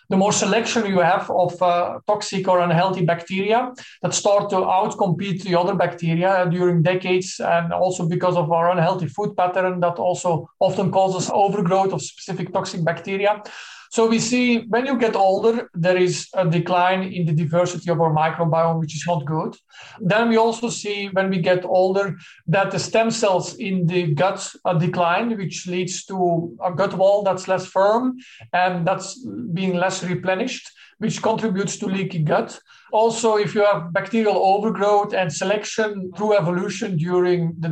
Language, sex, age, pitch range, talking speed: English, male, 50-69, 180-210 Hz, 170 wpm